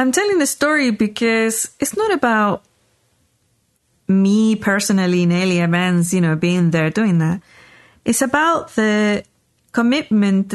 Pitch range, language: 185-235 Hz, English